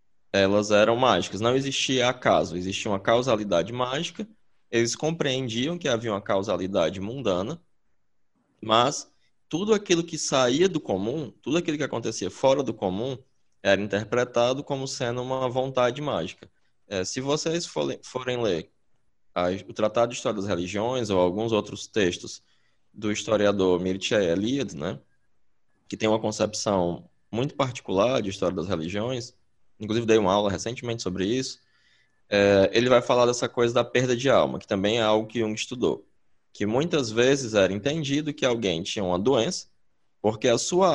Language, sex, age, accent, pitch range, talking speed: Portuguese, male, 20-39, Brazilian, 105-135 Hz, 155 wpm